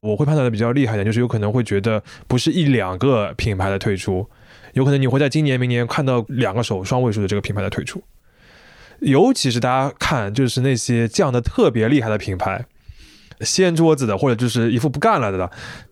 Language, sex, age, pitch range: Chinese, male, 20-39, 110-135 Hz